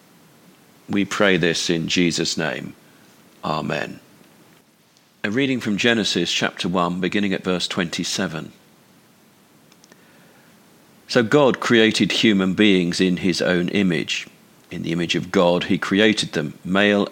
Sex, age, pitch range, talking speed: male, 50-69, 85-105 Hz, 125 wpm